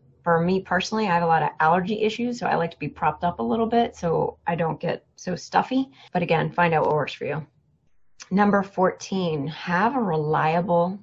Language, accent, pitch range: English, American, 155-210 Hz